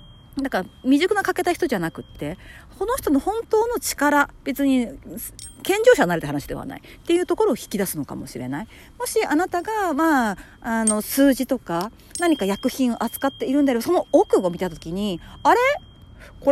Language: Japanese